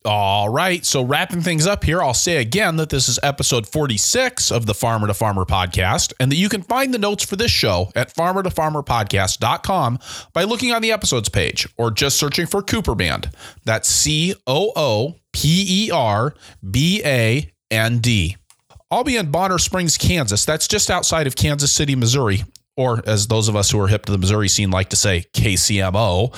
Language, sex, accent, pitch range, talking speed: English, male, American, 115-175 Hz, 200 wpm